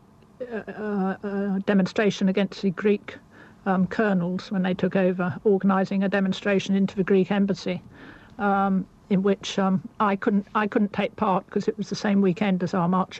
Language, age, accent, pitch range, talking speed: English, 60-79, British, 185-205 Hz, 180 wpm